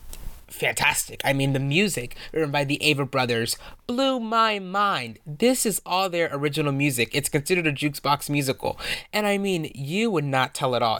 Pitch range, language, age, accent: 140-185 Hz, English, 20-39, American